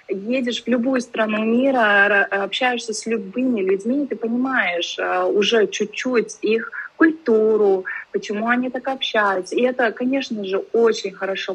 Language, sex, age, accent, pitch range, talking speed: Russian, female, 20-39, native, 185-225 Hz, 135 wpm